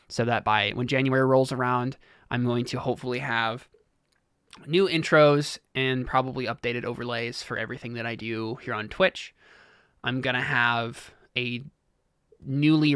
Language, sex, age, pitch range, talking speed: English, male, 20-39, 115-135 Hz, 150 wpm